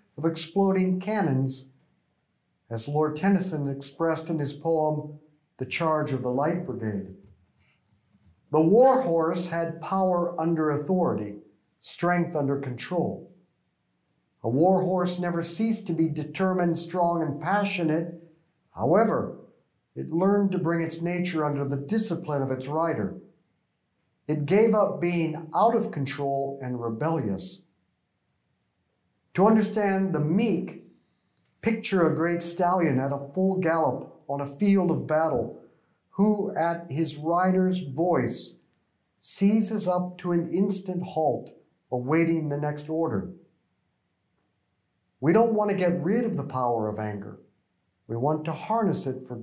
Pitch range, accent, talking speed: 140-185 Hz, American, 130 wpm